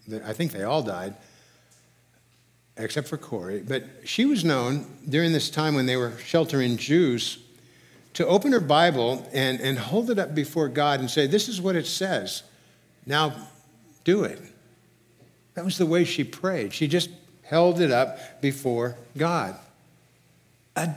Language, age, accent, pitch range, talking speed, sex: English, 60-79, American, 120-175 Hz, 155 wpm, male